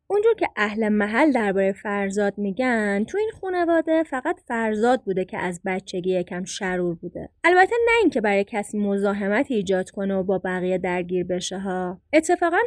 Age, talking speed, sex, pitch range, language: 20-39, 160 wpm, female, 200-310 Hz, Persian